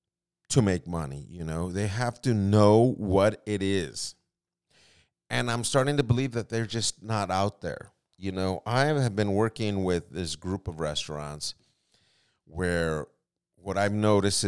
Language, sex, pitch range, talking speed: English, male, 100-130 Hz, 160 wpm